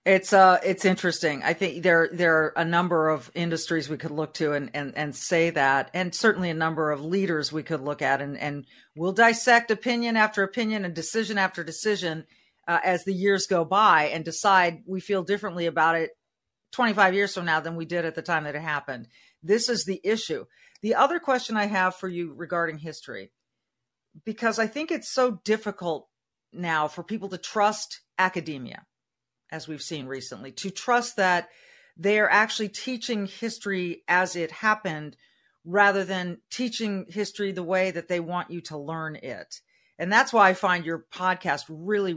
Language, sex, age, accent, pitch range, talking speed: English, female, 40-59, American, 160-205 Hz, 185 wpm